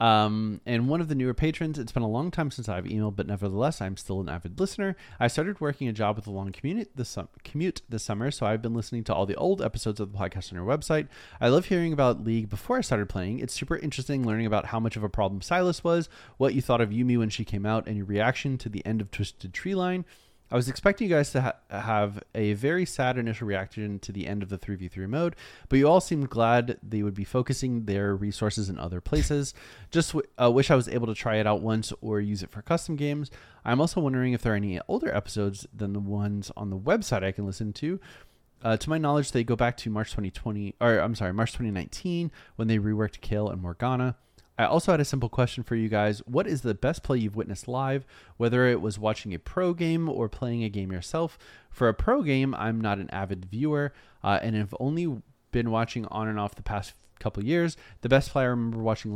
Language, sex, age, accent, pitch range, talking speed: English, male, 30-49, American, 105-135 Hz, 245 wpm